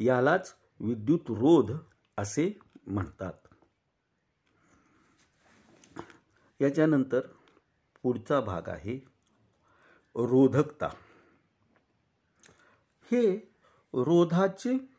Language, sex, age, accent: Marathi, male, 50-69, native